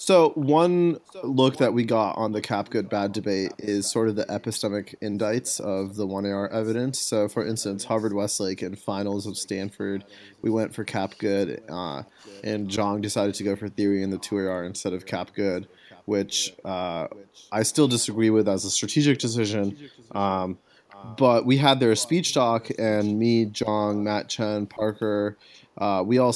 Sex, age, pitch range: male, 20-39, 100-110 Hz